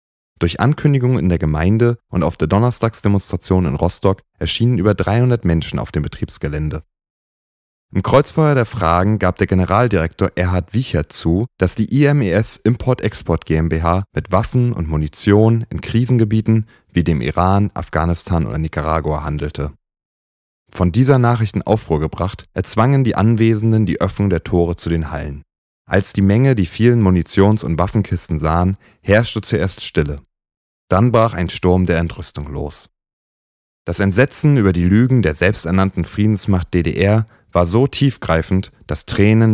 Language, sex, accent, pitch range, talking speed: German, male, German, 80-110 Hz, 145 wpm